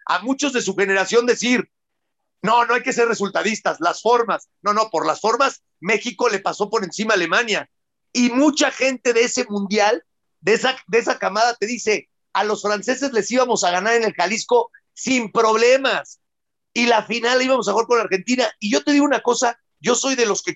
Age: 50-69